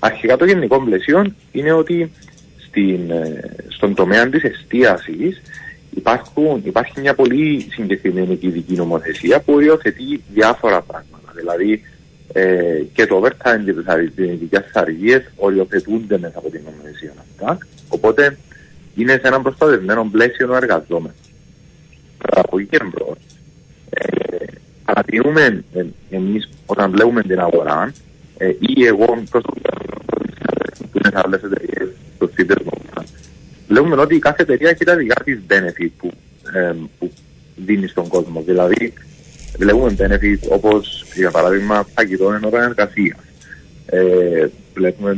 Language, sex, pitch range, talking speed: Greek, male, 90-115 Hz, 115 wpm